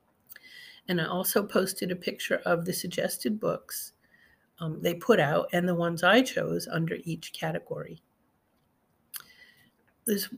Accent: American